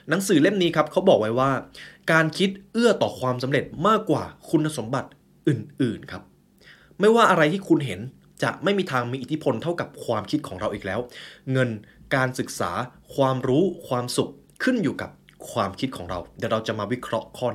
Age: 20-39